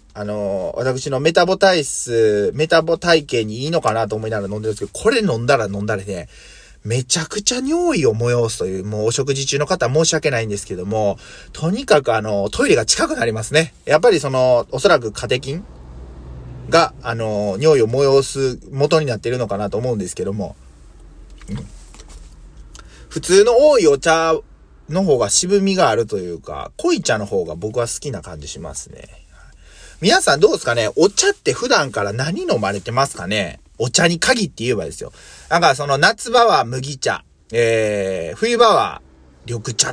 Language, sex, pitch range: Japanese, male, 100-160 Hz